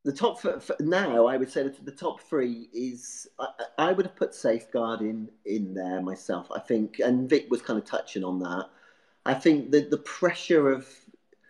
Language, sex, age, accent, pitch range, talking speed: English, male, 40-59, British, 105-125 Hz, 205 wpm